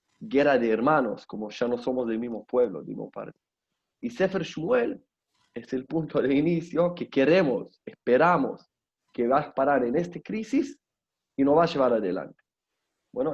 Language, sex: Spanish, male